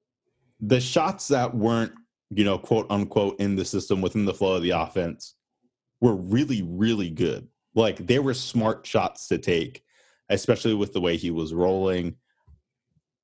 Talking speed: 160 wpm